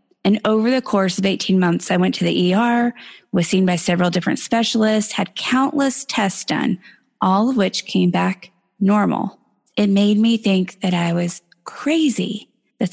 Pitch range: 185-230 Hz